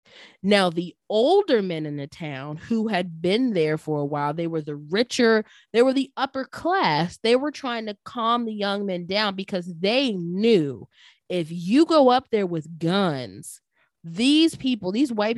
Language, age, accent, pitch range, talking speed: English, 20-39, American, 170-225 Hz, 180 wpm